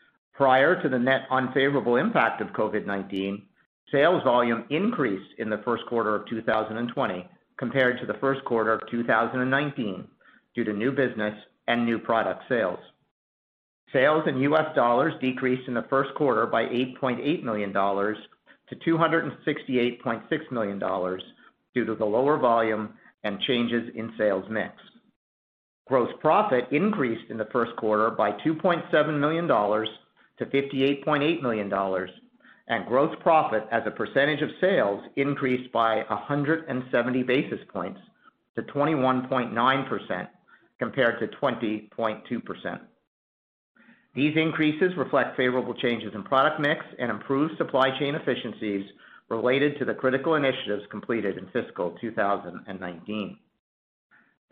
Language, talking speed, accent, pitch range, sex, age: English, 120 wpm, American, 110-135 Hz, male, 50-69